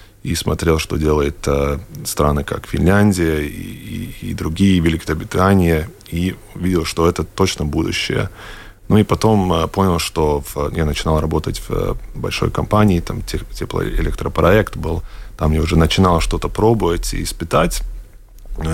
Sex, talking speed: male, 130 wpm